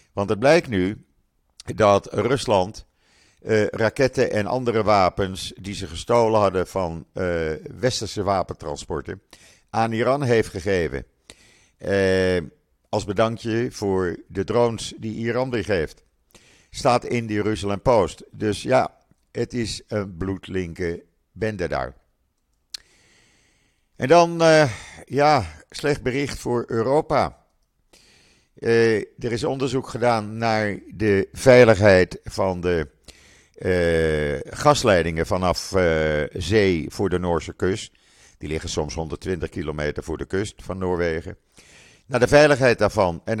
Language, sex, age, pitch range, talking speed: Dutch, male, 50-69, 90-115 Hz, 120 wpm